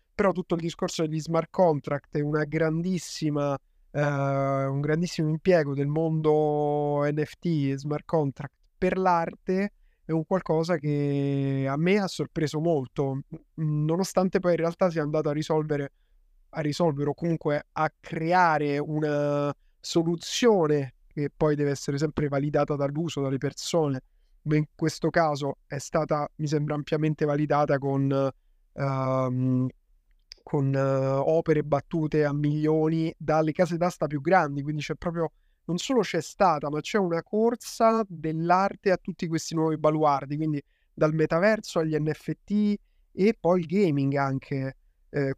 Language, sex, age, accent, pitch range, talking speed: Italian, male, 20-39, native, 145-170 Hz, 140 wpm